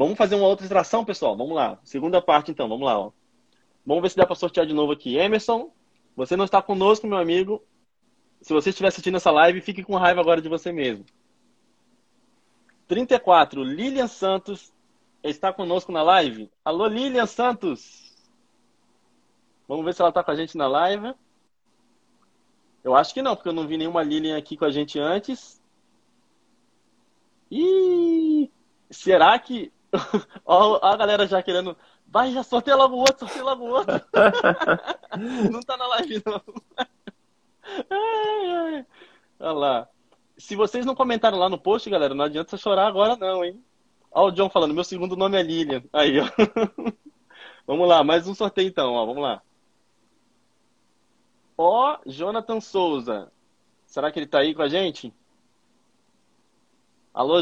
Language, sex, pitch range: Italian, male, 175-240 Hz